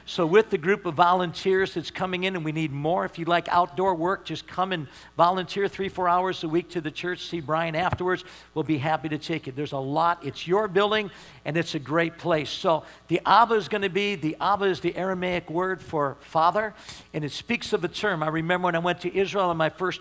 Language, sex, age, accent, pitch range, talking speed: English, male, 50-69, American, 160-185 Hz, 240 wpm